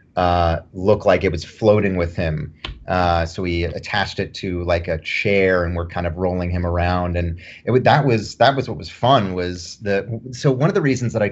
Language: English